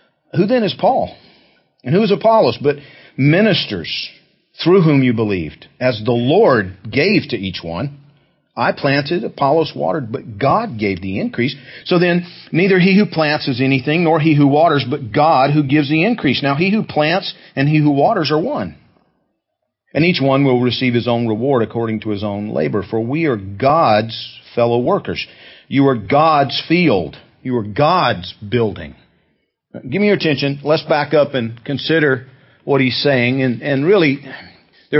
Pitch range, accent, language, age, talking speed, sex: 120-155 Hz, American, English, 40-59, 175 wpm, male